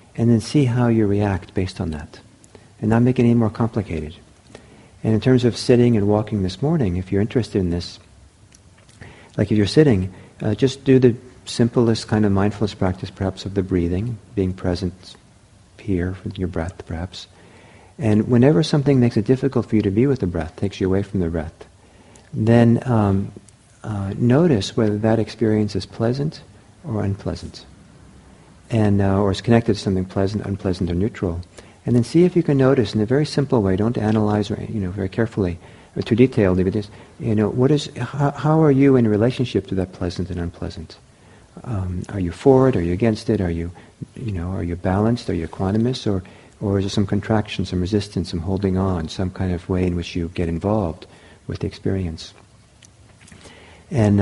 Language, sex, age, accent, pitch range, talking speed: English, male, 50-69, American, 95-115 Hz, 195 wpm